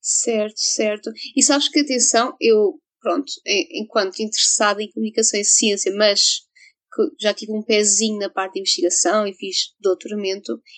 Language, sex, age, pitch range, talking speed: Portuguese, female, 20-39, 225-285 Hz, 150 wpm